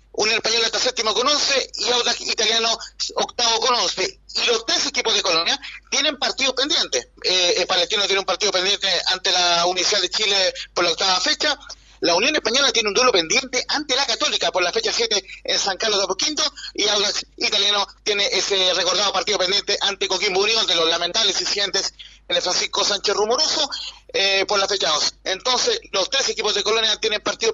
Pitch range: 185-245 Hz